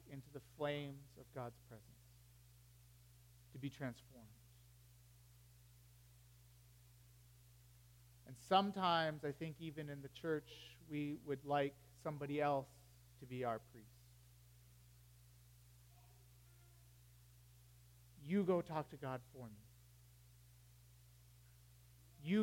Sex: male